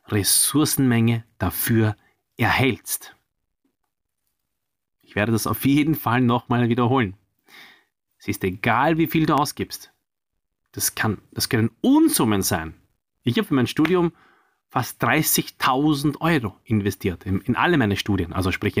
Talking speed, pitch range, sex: 125 wpm, 110-165 Hz, male